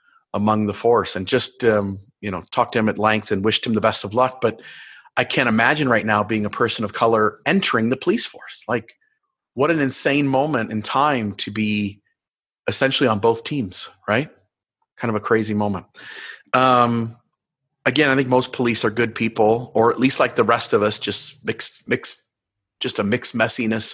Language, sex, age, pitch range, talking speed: English, male, 30-49, 110-130 Hz, 195 wpm